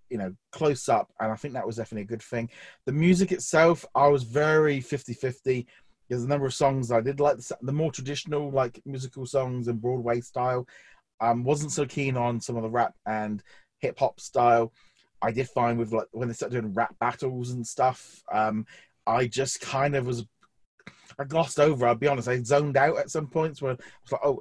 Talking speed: 205 wpm